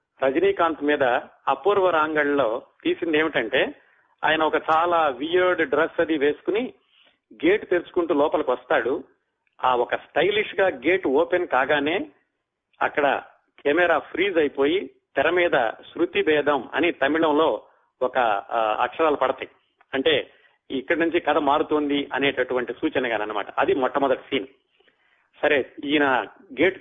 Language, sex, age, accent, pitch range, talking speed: Telugu, male, 40-59, native, 150-190 Hz, 115 wpm